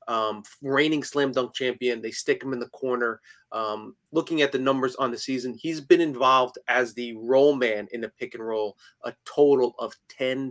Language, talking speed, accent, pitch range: English, 200 wpm, American, 120-145 Hz